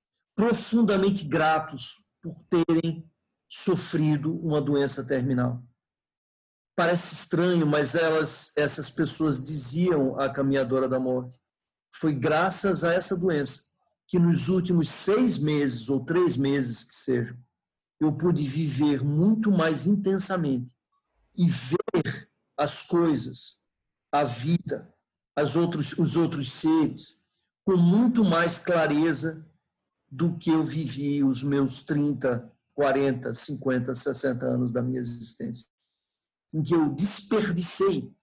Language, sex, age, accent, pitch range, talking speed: Portuguese, male, 50-69, Brazilian, 140-180 Hz, 115 wpm